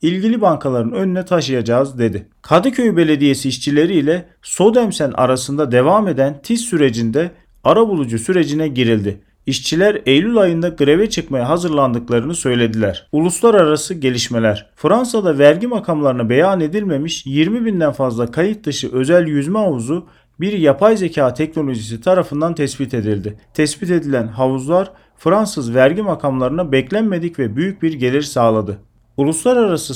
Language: Turkish